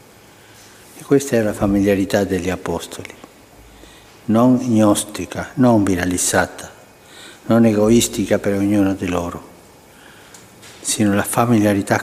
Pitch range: 100-125 Hz